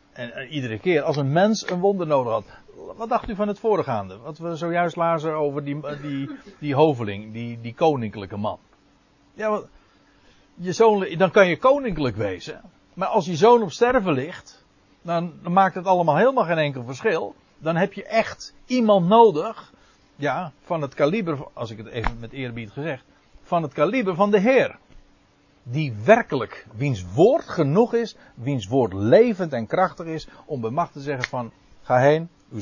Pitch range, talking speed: 125-190 Hz, 180 wpm